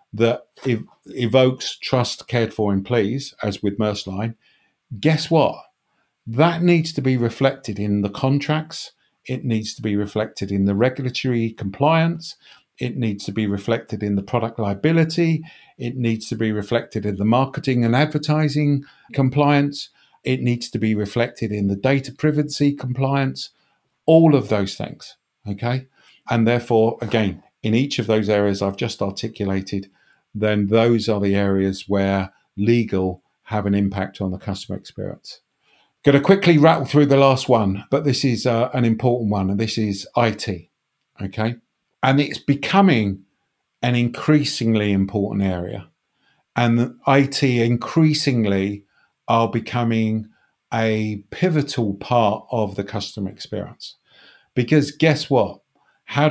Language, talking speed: English, 145 wpm